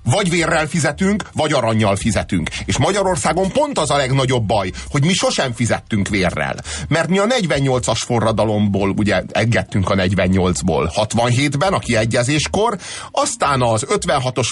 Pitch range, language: 95-135 Hz, Hungarian